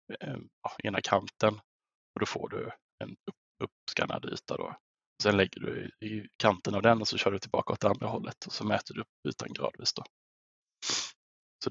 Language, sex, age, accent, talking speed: Swedish, male, 20-39, Norwegian, 185 wpm